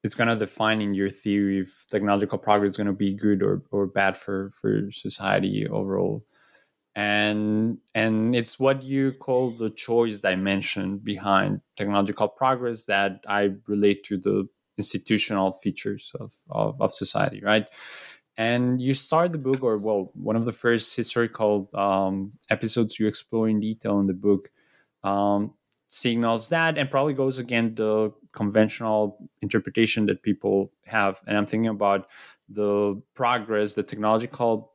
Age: 20-39